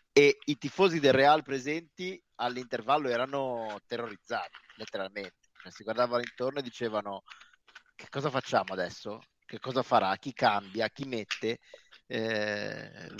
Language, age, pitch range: Italian, 30-49, 110-140 Hz